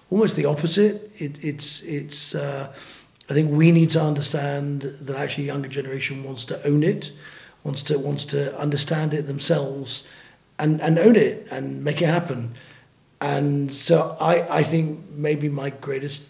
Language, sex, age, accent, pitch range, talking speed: English, male, 40-59, British, 145-170 Hz, 160 wpm